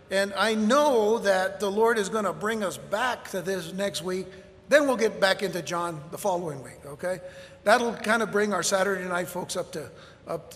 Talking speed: 210 wpm